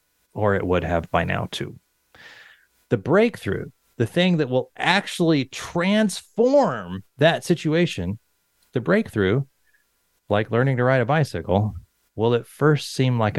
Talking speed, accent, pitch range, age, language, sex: 135 wpm, American, 120-200 Hz, 30-49, English, male